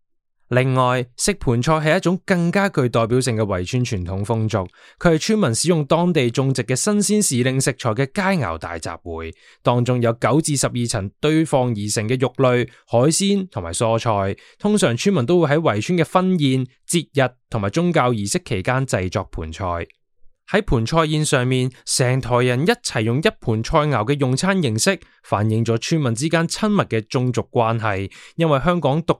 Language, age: Chinese, 20-39